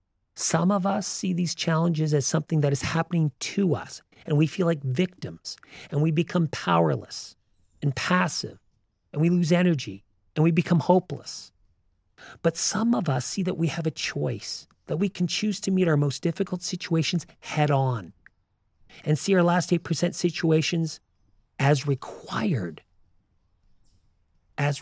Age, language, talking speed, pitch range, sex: 40-59, English, 150 wpm, 100-170 Hz, male